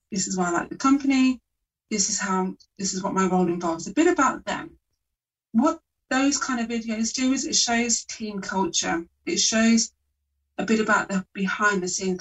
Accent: British